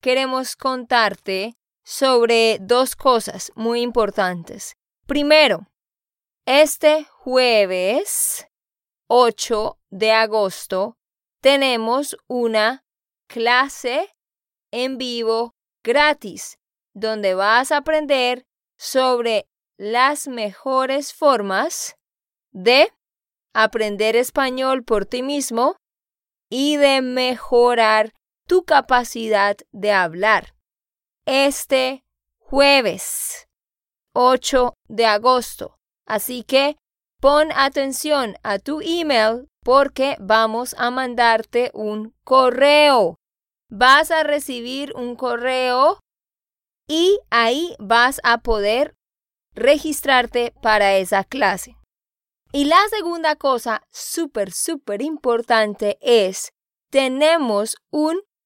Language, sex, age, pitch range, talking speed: Spanish, female, 20-39, 225-280 Hz, 85 wpm